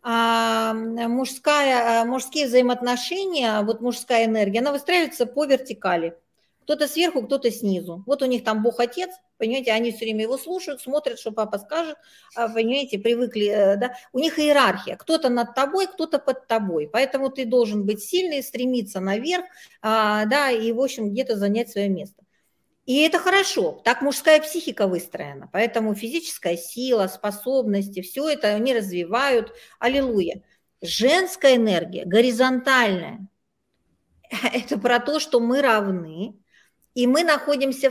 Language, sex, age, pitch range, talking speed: Russian, female, 50-69, 220-285 Hz, 135 wpm